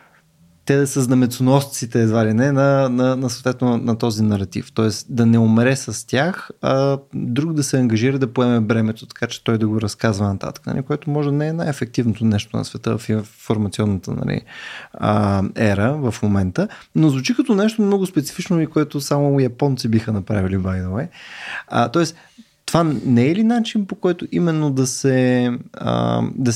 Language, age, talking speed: Bulgarian, 20-39, 170 wpm